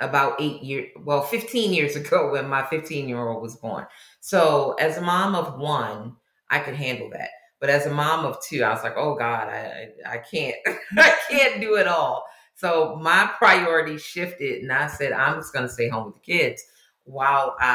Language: English